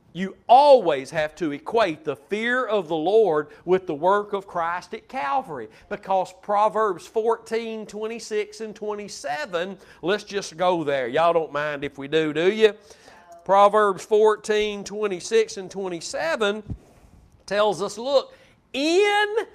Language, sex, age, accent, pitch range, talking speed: English, male, 50-69, American, 200-270 Hz, 135 wpm